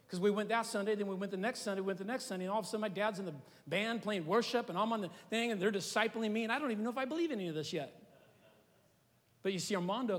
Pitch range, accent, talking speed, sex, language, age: 180-235 Hz, American, 320 wpm, male, English, 40-59